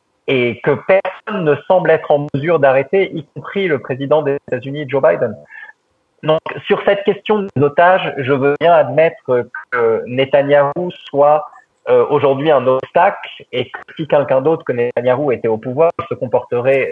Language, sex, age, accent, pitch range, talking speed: French, male, 30-49, French, 135-215 Hz, 165 wpm